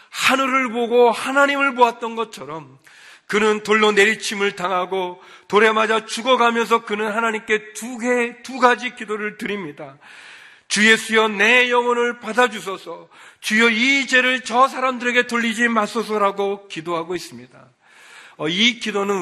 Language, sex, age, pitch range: Korean, male, 40-59, 185-230 Hz